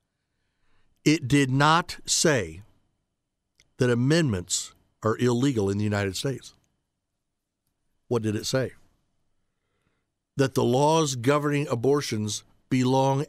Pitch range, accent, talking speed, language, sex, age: 100-140 Hz, American, 100 wpm, English, male, 60-79